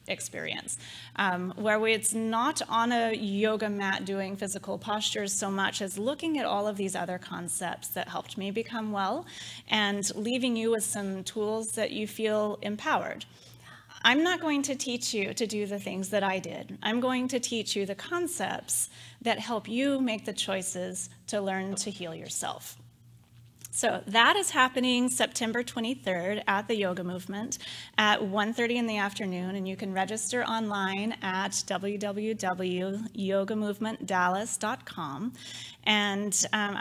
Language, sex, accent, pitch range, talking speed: English, female, American, 190-225 Hz, 150 wpm